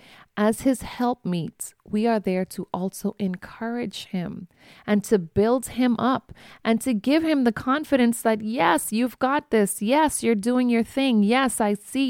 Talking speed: 175 wpm